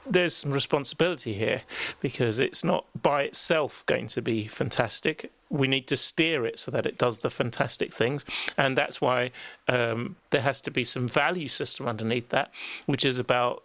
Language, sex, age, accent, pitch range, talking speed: English, male, 40-59, British, 125-160 Hz, 180 wpm